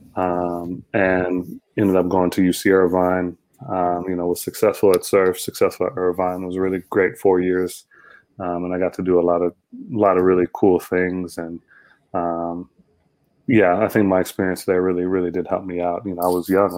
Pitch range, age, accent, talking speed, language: 90-95 Hz, 20-39, American, 210 wpm, English